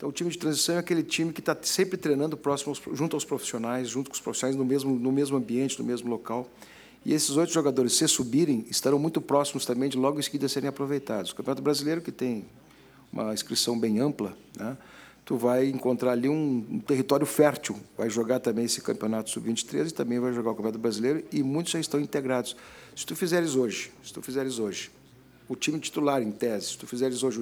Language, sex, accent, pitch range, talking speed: Portuguese, male, Brazilian, 125-150 Hz, 210 wpm